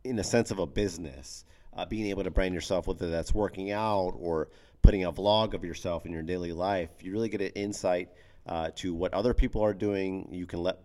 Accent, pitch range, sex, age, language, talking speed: American, 85-110 Hz, male, 40-59, English, 225 wpm